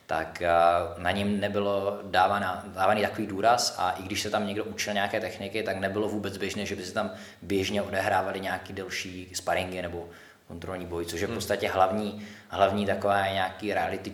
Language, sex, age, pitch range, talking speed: Czech, male, 20-39, 90-100 Hz, 175 wpm